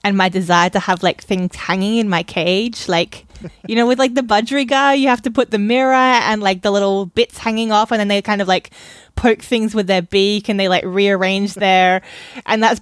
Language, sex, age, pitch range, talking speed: English, female, 20-39, 190-240 Hz, 230 wpm